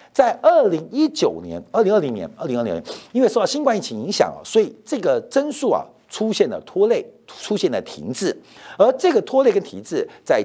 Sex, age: male, 50-69